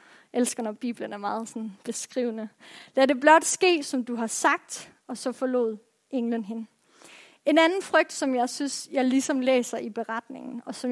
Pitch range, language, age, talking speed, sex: 245-310 Hz, Danish, 30-49, 185 wpm, female